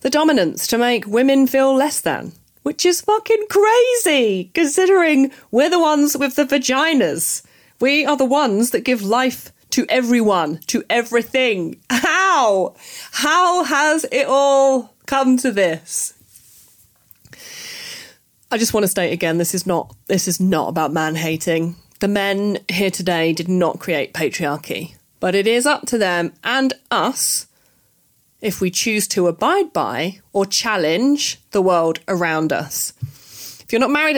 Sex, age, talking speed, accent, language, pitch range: female, 30-49, 150 wpm, British, English, 185-280 Hz